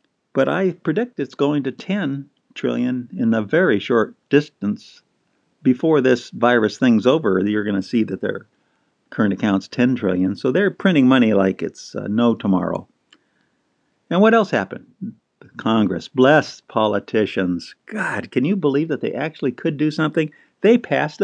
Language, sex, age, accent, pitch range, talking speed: English, male, 50-69, American, 105-165 Hz, 160 wpm